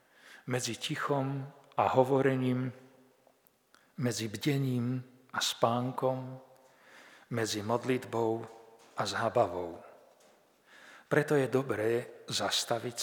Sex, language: male, Slovak